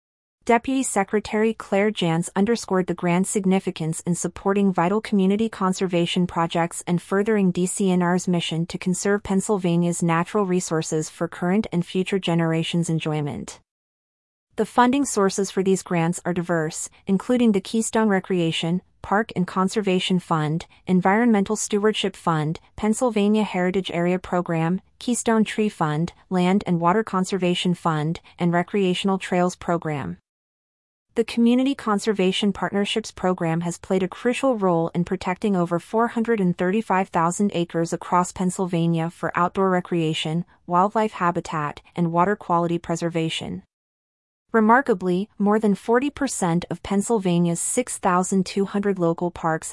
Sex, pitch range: female, 170-205 Hz